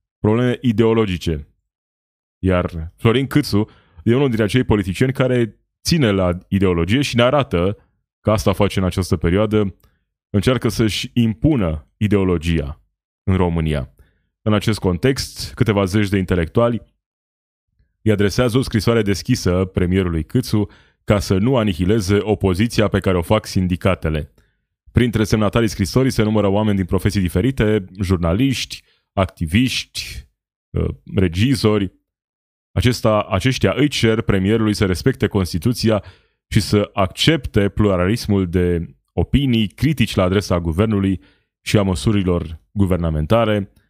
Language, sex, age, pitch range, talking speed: Romanian, male, 20-39, 90-110 Hz, 120 wpm